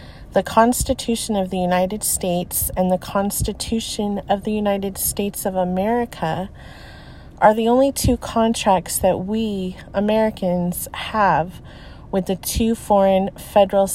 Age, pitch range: 30-49, 190-215 Hz